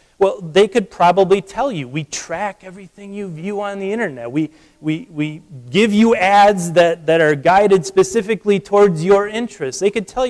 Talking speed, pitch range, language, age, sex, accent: 180 wpm, 155-205 Hz, English, 30-49, male, American